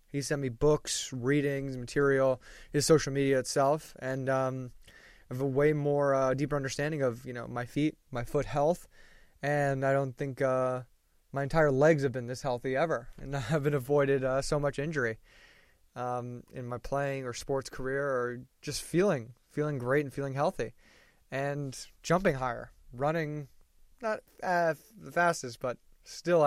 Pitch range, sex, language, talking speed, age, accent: 130-165 Hz, male, English, 170 wpm, 20-39, American